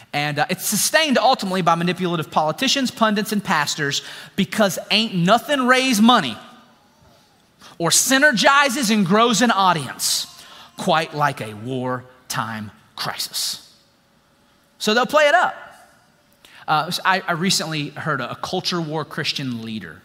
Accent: American